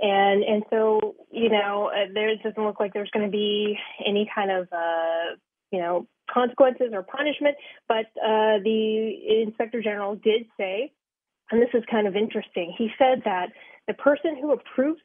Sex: female